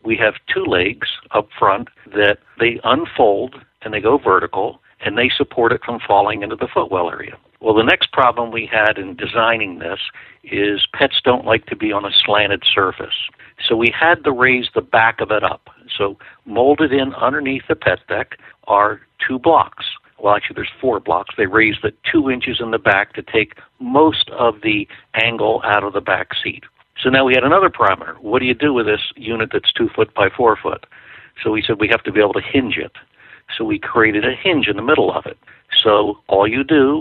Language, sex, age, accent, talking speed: English, male, 60-79, American, 210 wpm